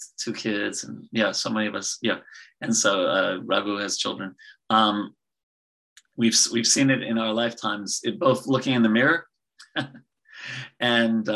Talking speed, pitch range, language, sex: 160 wpm, 110-145 Hz, English, male